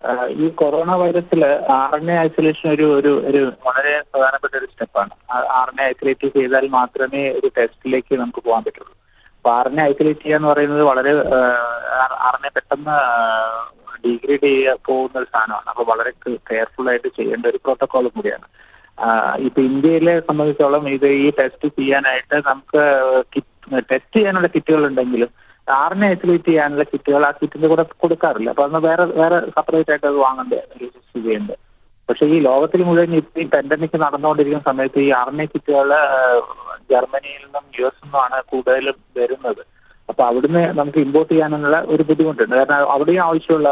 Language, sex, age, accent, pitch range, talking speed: Malayalam, male, 30-49, native, 130-160 Hz, 135 wpm